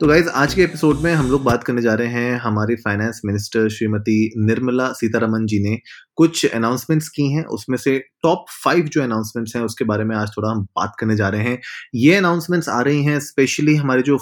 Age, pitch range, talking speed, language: 20-39, 115-150 Hz, 215 wpm, Hindi